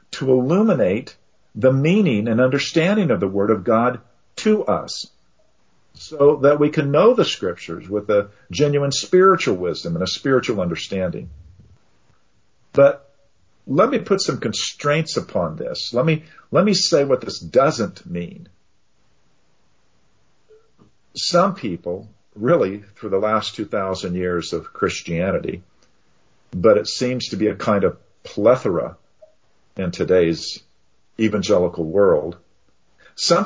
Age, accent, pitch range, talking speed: 50-69, American, 110-170 Hz, 125 wpm